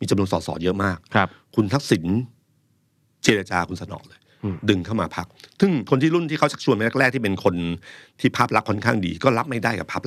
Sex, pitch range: male, 90-120 Hz